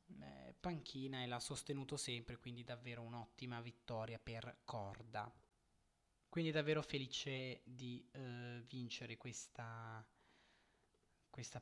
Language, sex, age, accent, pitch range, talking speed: Italian, male, 20-39, native, 125-160 Hz, 100 wpm